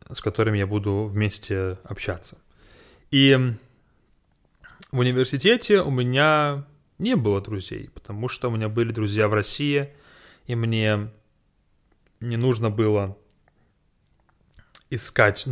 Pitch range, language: 105-140 Hz, English